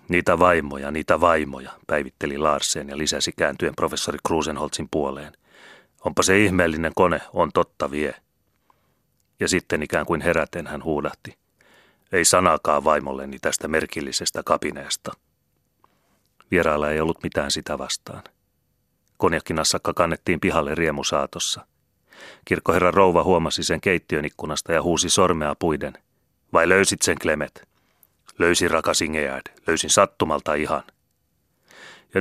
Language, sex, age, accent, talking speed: Finnish, male, 30-49, native, 115 wpm